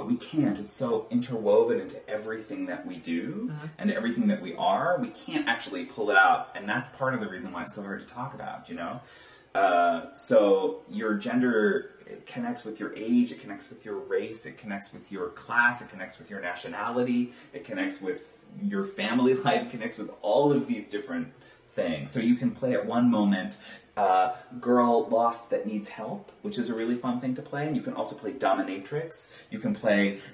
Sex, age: male, 30-49